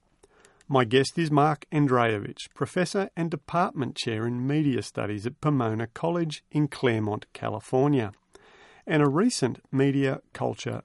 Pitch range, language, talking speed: 115-150 Hz, English, 125 wpm